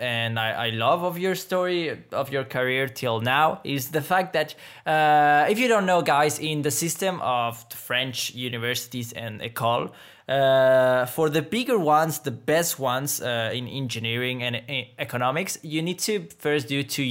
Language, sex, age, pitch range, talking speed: English, male, 20-39, 120-155 Hz, 170 wpm